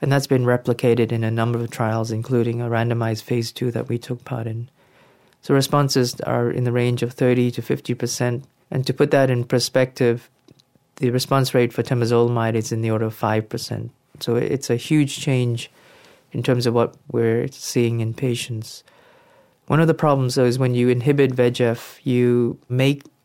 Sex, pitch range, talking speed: male, 115-130 Hz, 185 wpm